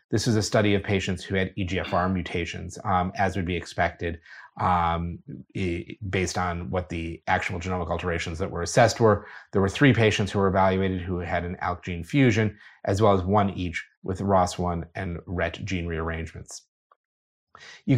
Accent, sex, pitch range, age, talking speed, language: American, male, 90-105 Hz, 30-49, 175 wpm, English